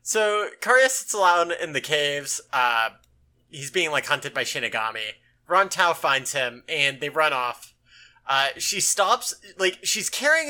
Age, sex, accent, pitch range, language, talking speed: 30-49, male, American, 130-195 Hz, English, 155 wpm